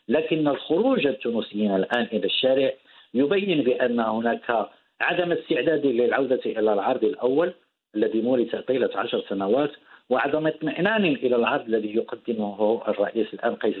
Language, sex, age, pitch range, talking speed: English, male, 50-69, 105-130 Hz, 120 wpm